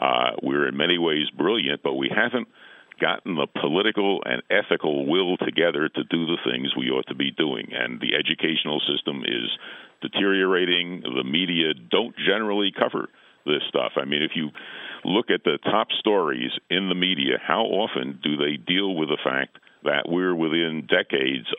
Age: 50-69